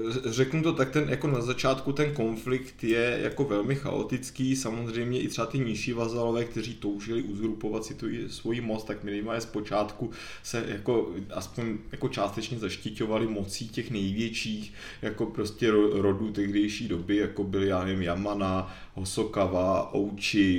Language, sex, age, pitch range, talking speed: Czech, male, 20-39, 100-115 Hz, 150 wpm